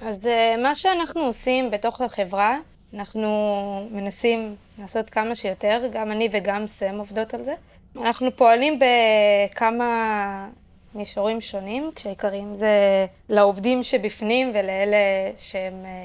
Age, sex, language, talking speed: 20-39, female, Hebrew, 110 wpm